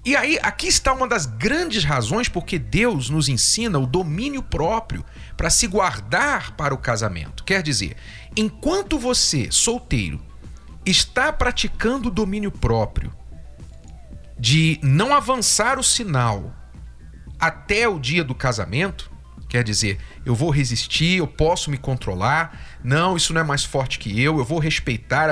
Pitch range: 120-190 Hz